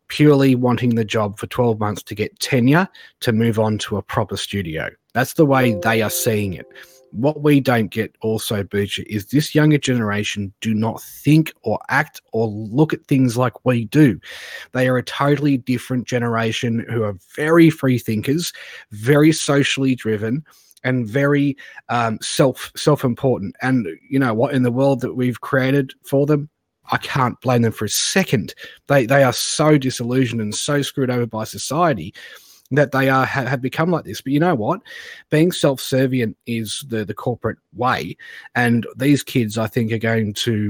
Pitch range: 110-135 Hz